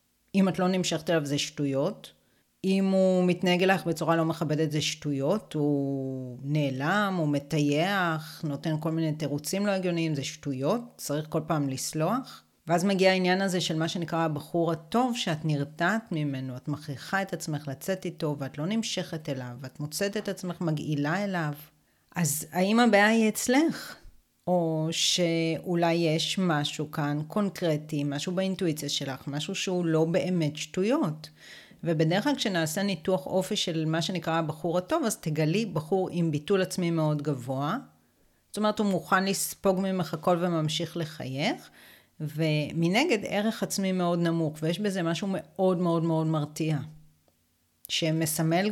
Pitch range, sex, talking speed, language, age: 150-185 Hz, female, 145 wpm, Hebrew, 30-49